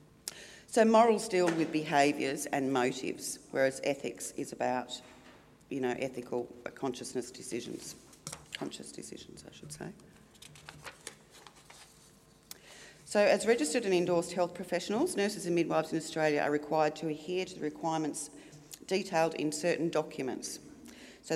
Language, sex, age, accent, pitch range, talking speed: English, female, 40-59, Australian, 140-170 Hz, 120 wpm